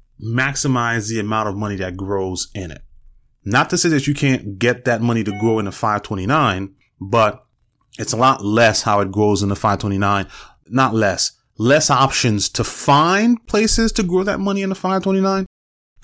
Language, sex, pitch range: English, male, 100-135 Hz